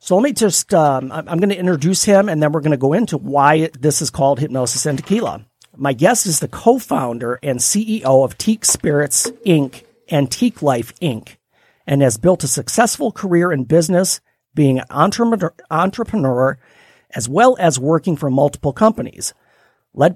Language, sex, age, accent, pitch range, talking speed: English, male, 50-69, American, 130-180 Hz, 170 wpm